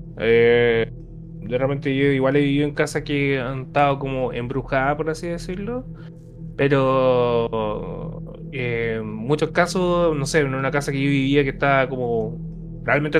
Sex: male